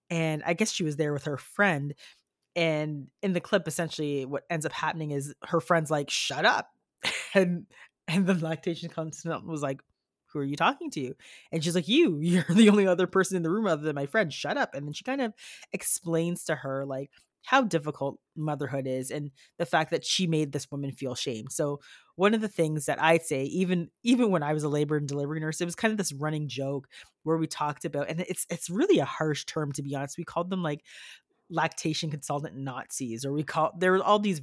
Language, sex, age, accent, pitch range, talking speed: English, female, 30-49, American, 140-180 Hz, 230 wpm